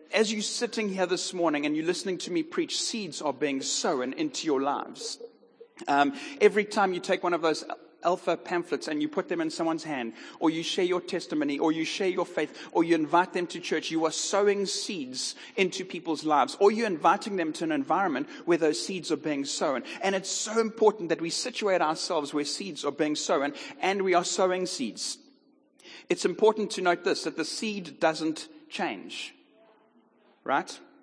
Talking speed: 195 wpm